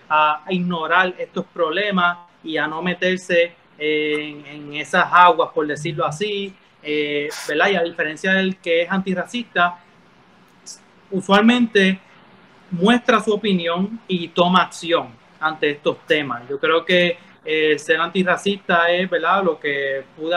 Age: 30-49